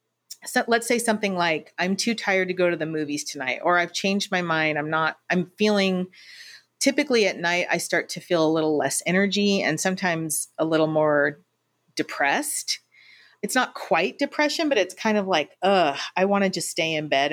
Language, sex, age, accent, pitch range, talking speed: English, female, 40-59, American, 170-230 Hz, 195 wpm